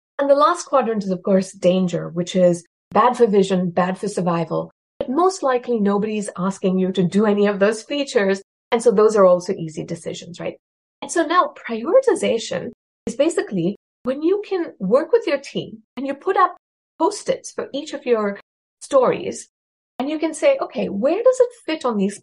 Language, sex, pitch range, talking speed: English, female, 195-290 Hz, 190 wpm